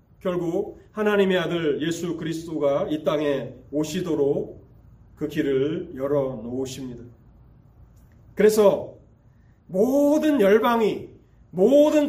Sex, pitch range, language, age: male, 120-195 Hz, Korean, 30-49